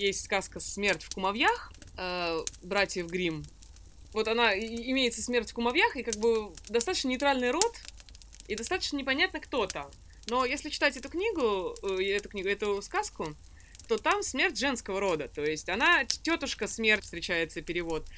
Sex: female